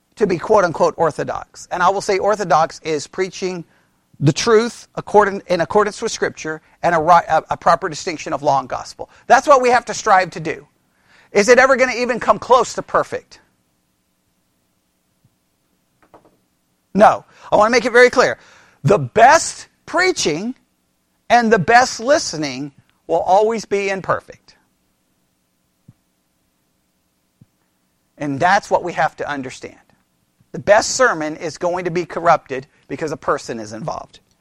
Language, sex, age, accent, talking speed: English, male, 40-59, American, 145 wpm